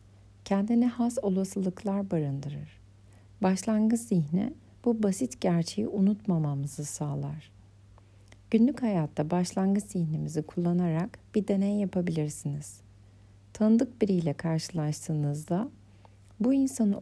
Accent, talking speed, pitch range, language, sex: native, 85 wpm, 140-190 Hz, Turkish, female